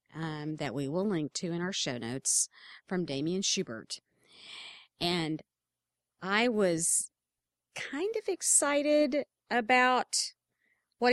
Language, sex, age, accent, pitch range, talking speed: English, female, 40-59, American, 170-245 Hz, 115 wpm